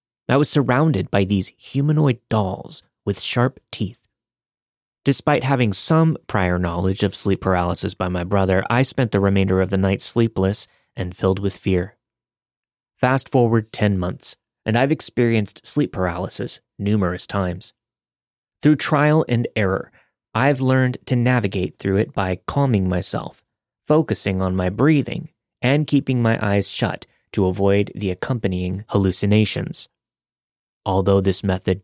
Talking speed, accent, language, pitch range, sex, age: 140 wpm, American, English, 95-125 Hz, male, 20-39